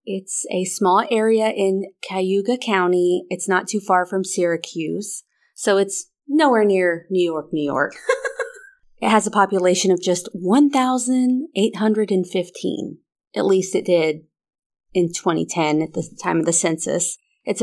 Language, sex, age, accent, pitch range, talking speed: English, female, 30-49, American, 175-220 Hz, 140 wpm